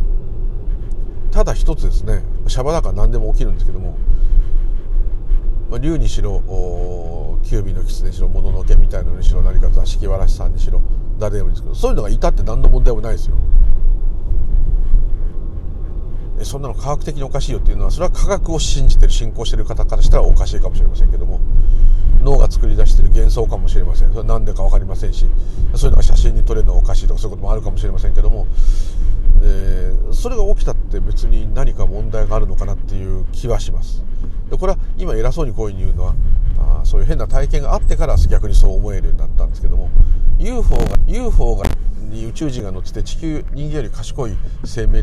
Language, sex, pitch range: Japanese, male, 90-110 Hz